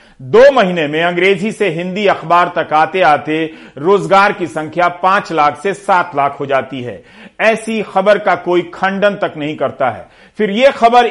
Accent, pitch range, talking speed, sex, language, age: native, 160-205 Hz, 180 wpm, male, Hindi, 50-69